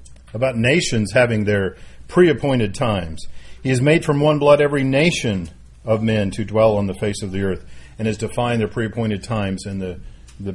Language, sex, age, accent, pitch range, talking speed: English, male, 40-59, American, 95-130 Hz, 190 wpm